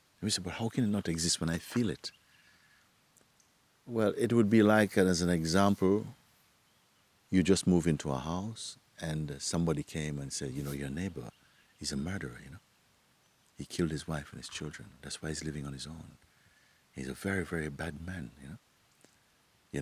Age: 60-79